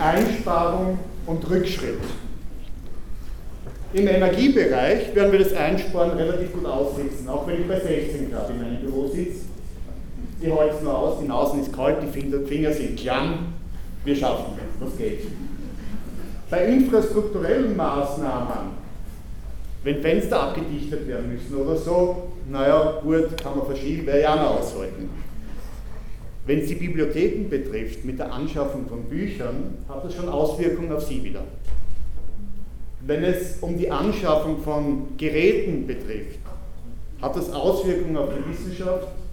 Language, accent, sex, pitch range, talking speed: German, German, male, 125-175 Hz, 135 wpm